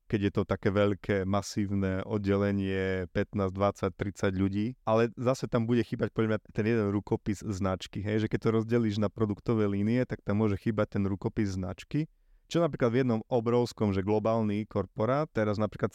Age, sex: 30-49, male